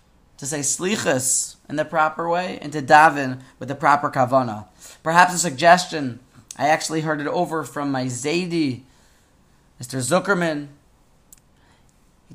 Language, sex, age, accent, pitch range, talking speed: English, male, 20-39, American, 130-180 Hz, 135 wpm